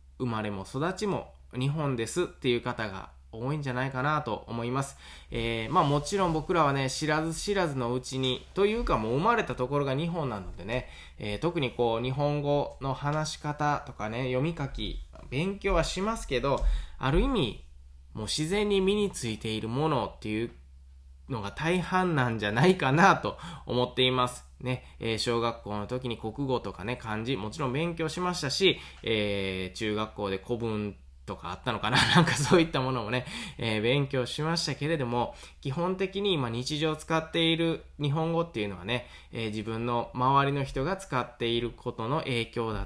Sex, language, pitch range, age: male, Japanese, 115-155 Hz, 20-39